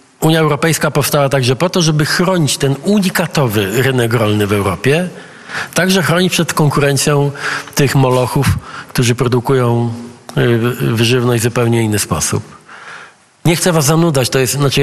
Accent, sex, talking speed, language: native, male, 140 wpm, Polish